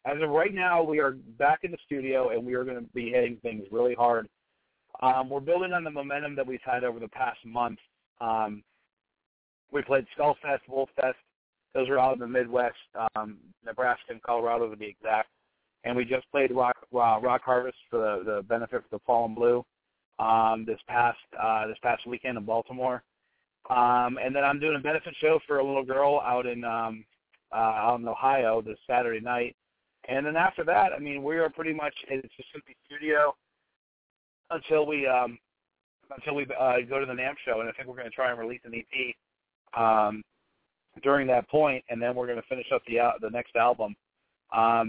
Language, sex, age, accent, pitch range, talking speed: English, male, 40-59, American, 115-135 Hz, 205 wpm